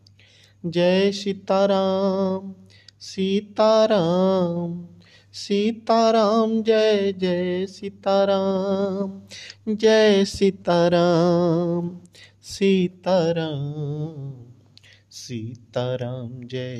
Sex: male